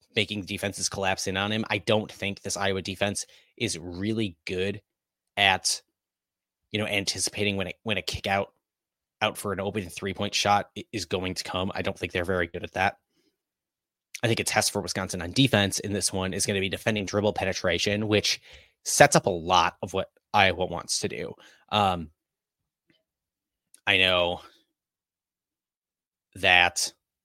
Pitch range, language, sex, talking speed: 95-105 Hz, English, male, 170 wpm